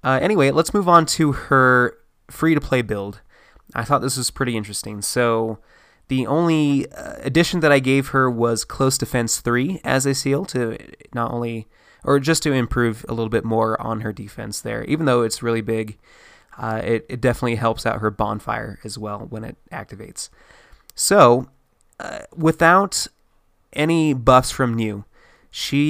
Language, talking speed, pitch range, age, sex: English, 170 wpm, 110-135 Hz, 20-39, male